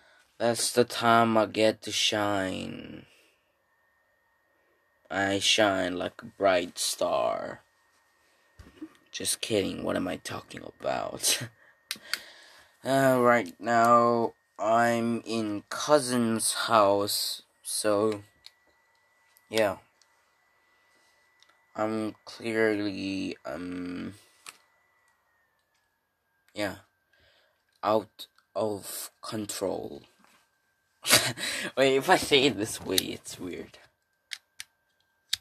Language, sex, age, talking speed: English, male, 20-39, 75 wpm